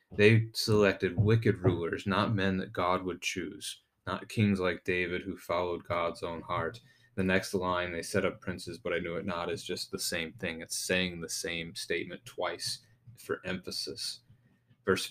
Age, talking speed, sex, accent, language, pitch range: 30-49, 180 wpm, male, American, English, 95-115 Hz